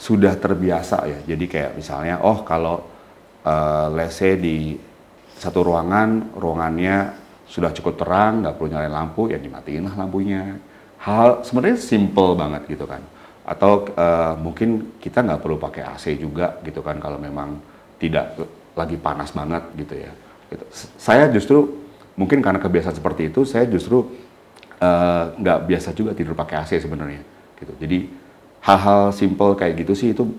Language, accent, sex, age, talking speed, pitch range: Indonesian, native, male, 40-59, 150 wpm, 80-100 Hz